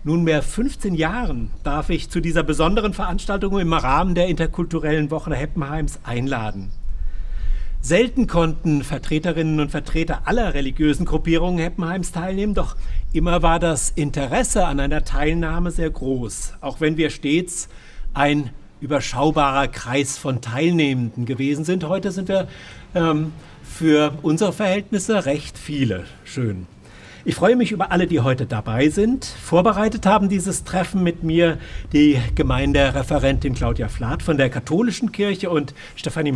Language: German